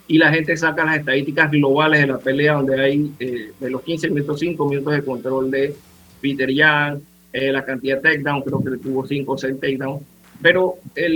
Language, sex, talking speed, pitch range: Spanish, male, 205 wpm, 140-170 Hz